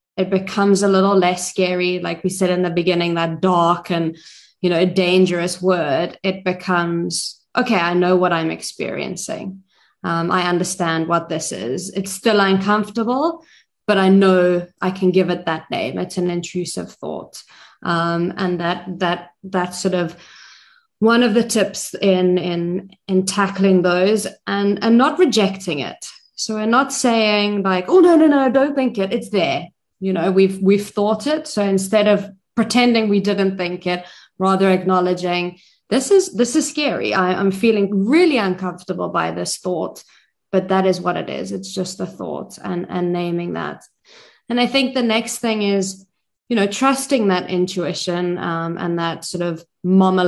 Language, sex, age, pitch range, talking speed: English, female, 20-39, 175-205 Hz, 175 wpm